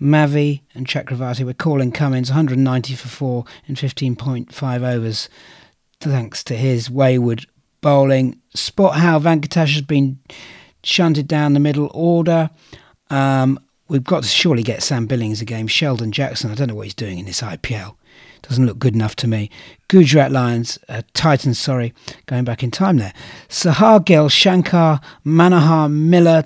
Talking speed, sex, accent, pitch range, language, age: 150 wpm, male, British, 125-155 Hz, English, 40-59